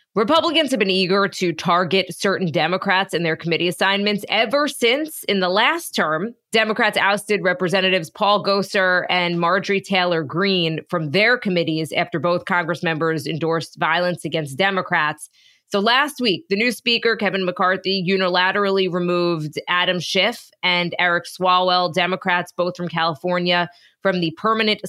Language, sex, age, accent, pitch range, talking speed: English, female, 20-39, American, 175-205 Hz, 145 wpm